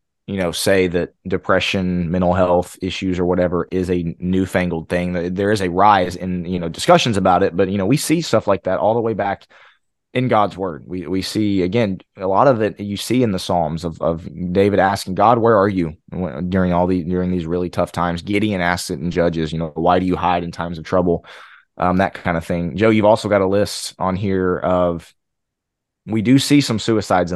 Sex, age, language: male, 20-39, English